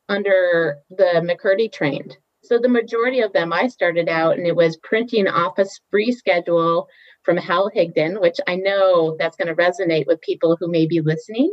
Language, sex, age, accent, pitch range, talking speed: English, female, 30-49, American, 165-205 Hz, 180 wpm